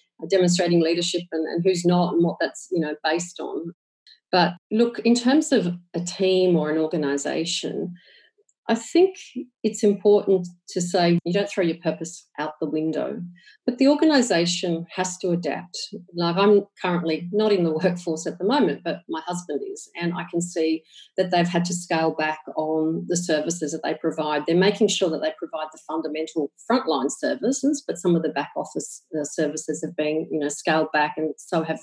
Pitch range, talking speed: 160-190 Hz, 185 wpm